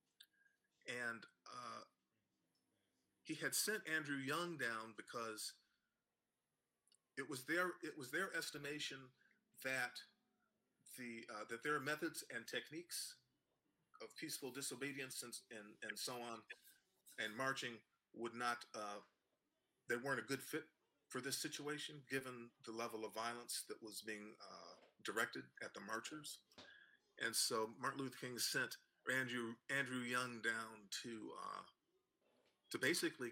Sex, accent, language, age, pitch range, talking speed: male, American, English, 40-59, 115-150 Hz, 130 wpm